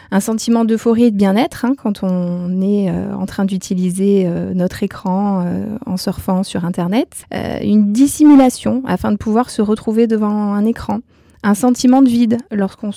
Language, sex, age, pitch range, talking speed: French, female, 20-39, 195-230 Hz, 165 wpm